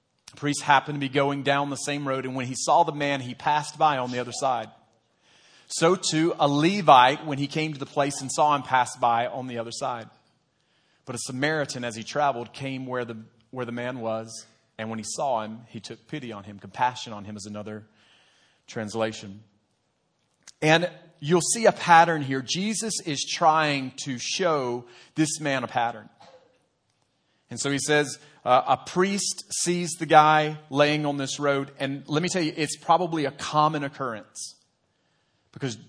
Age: 30-49